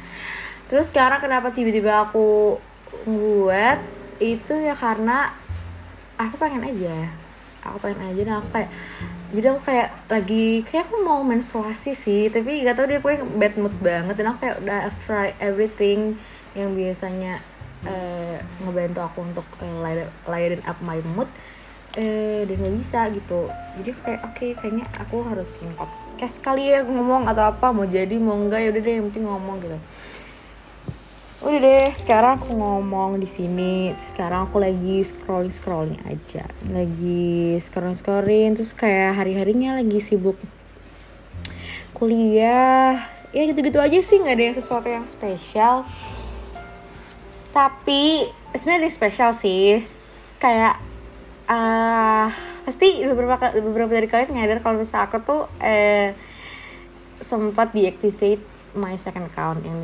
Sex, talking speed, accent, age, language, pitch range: female, 140 wpm, native, 20-39, Indonesian, 185-240 Hz